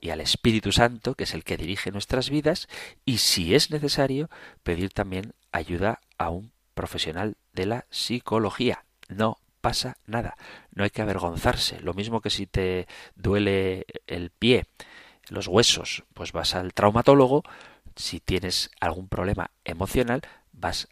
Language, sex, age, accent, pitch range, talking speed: Spanish, male, 40-59, Spanish, 90-115 Hz, 145 wpm